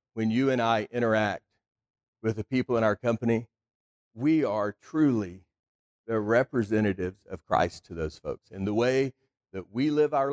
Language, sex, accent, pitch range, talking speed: English, male, American, 100-135 Hz, 165 wpm